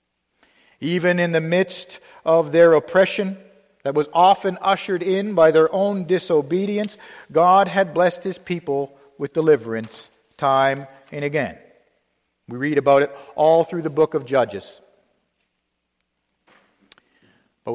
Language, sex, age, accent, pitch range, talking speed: English, male, 50-69, American, 140-185 Hz, 125 wpm